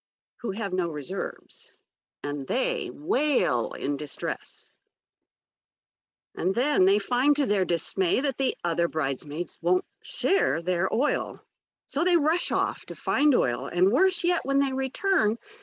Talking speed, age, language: 140 wpm, 50-69, English